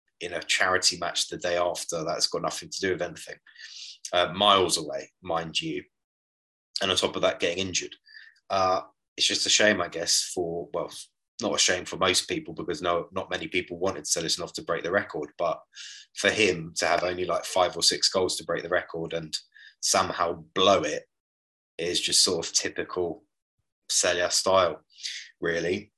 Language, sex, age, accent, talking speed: English, male, 20-39, British, 185 wpm